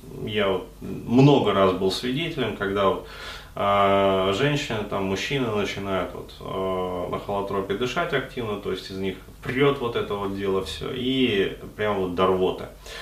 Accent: native